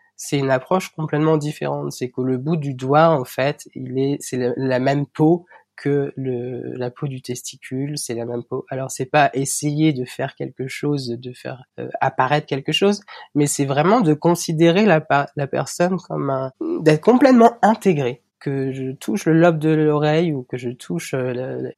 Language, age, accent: French, 20-39, French